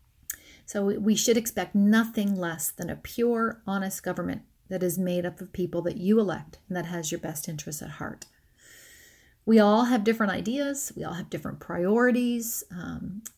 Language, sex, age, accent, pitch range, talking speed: English, female, 40-59, American, 175-220 Hz, 175 wpm